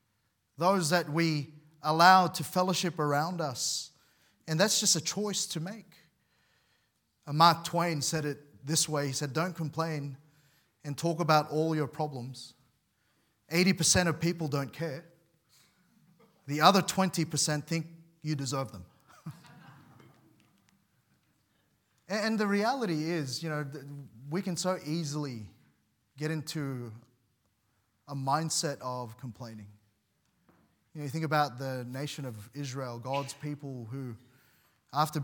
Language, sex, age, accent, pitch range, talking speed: English, male, 30-49, Australian, 130-165 Hz, 125 wpm